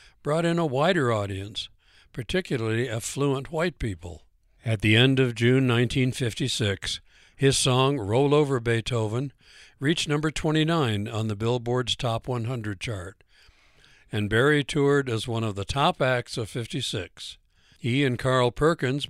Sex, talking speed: male, 140 wpm